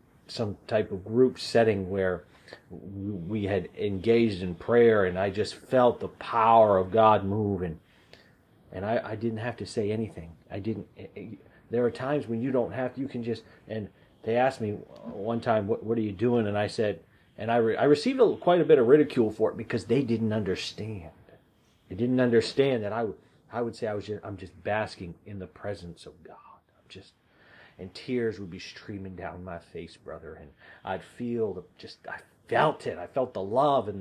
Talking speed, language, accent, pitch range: 205 wpm, English, American, 100-115 Hz